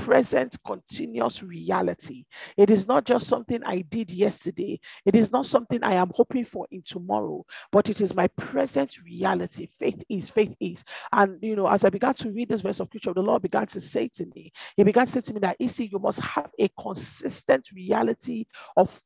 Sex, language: male, English